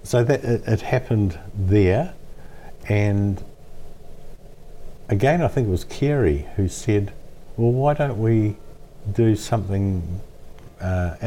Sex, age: male, 50-69